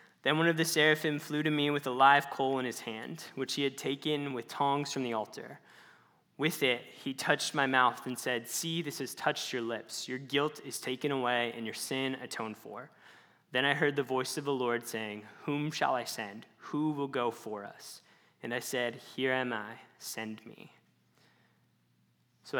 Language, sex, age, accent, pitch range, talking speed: English, male, 10-29, American, 115-145 Hz, 200 wpm